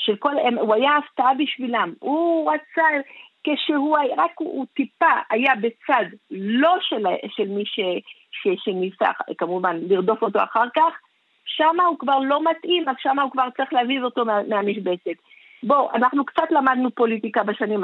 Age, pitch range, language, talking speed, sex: 50-69, 230-295 Hz, Hebrew, 160 wpm, female